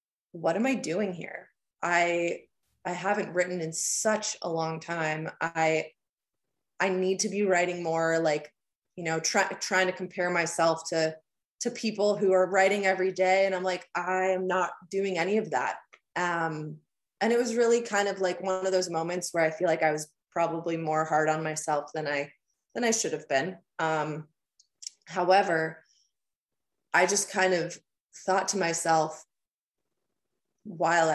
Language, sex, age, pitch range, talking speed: English, female, 20-39, 160-190 Hz, 165 wpm